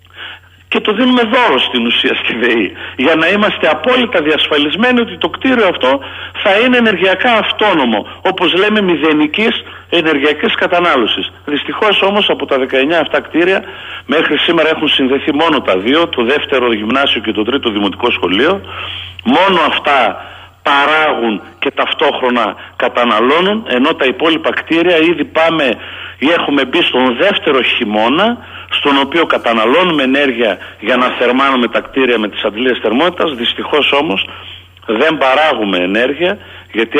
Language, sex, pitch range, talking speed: Greek, male, 115-170 Hz, 140 wpm